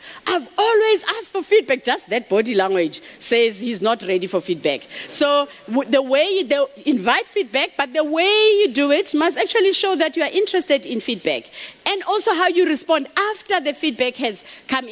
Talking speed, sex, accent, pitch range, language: 185 wpm, female, South African, 220-330 Hz, English